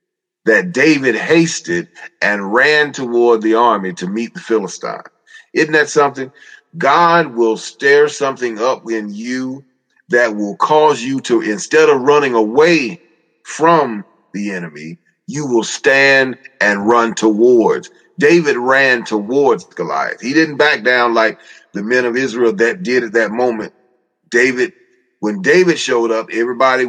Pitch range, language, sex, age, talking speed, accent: 115-170 Hz, English, male, 30-49, 145 wpm, American